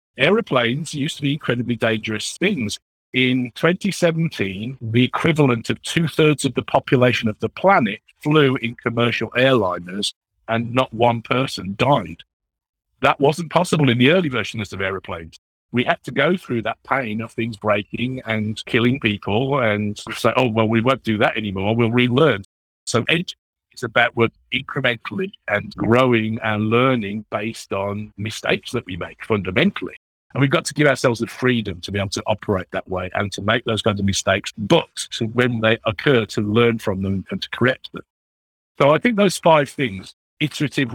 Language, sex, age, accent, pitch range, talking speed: English, male, 50-69, British, 105-135 Hz, 175 wpm